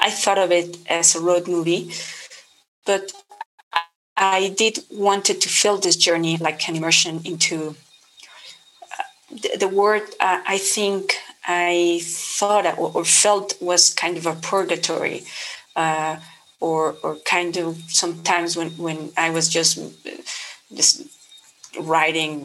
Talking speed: 135 wpm